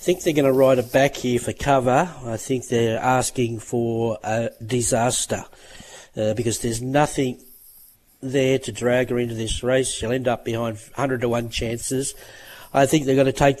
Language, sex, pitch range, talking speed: English, male, 115-135 Hz, 190 wpm